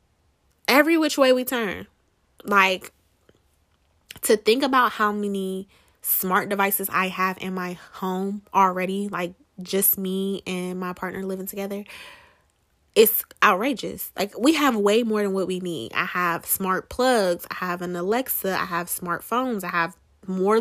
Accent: American